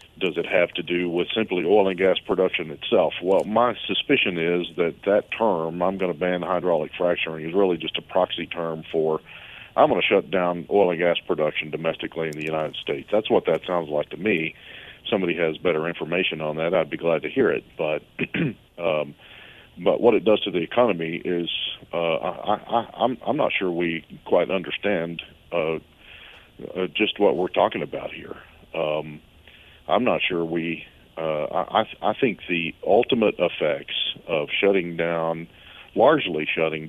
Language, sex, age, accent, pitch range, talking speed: English, male, 40-59, American, 80-90 Hz, 175 wpm